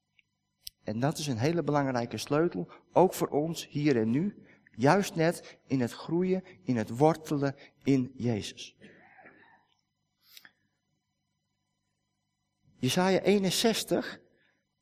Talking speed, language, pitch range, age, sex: 100 wpm, Dutch, 135-170 Hz, 50-69, male